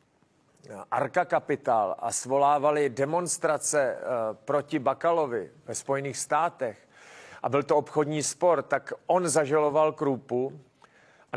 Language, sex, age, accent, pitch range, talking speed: Czech, male, 40-59, native, 145-170 Hz, 105 wpm